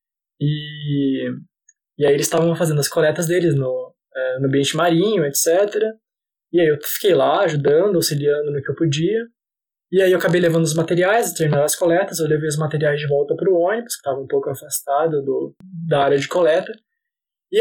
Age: 20-39